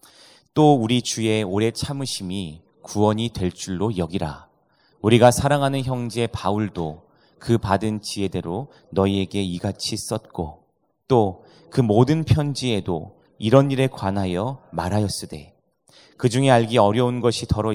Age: 30-49